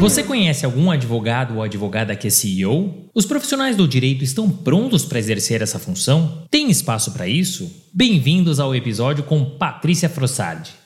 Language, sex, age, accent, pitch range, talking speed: Portuguese, male, 30-49, Brazilian, 125-165 Hz, 160 wpm